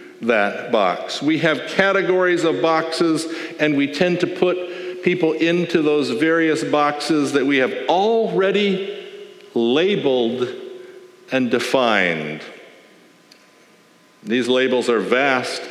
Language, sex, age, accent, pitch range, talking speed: English, male, 60-79, American, 150-235 Hz, 105 wpm